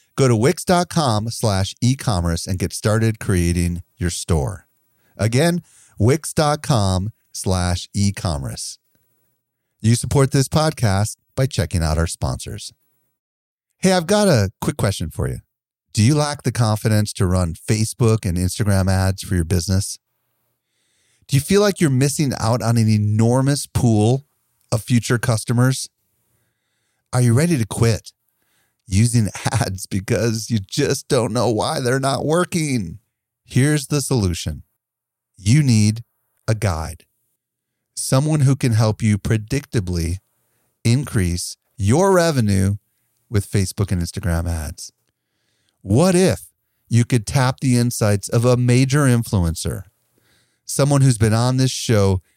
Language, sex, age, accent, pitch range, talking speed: English, male, 40-59, American, 100-130 Hz, 135 wpm